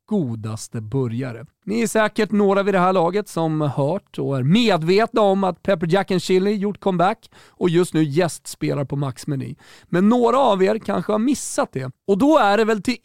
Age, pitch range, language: 40-59, 150-220 Hz, Swedish